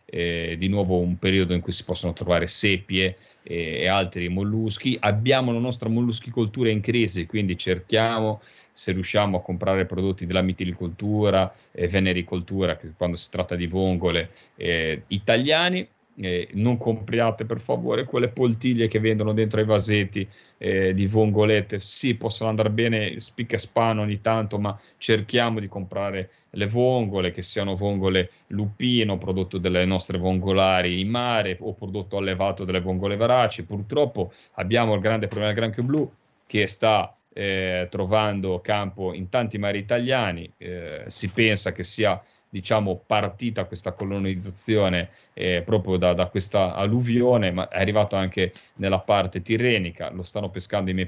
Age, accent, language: 30-49, native, Italian